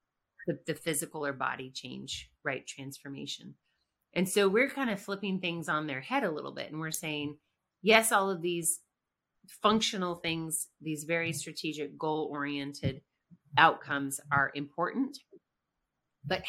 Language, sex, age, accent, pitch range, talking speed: English, female, 30-49, American, 150-195 Hz, 140 wpm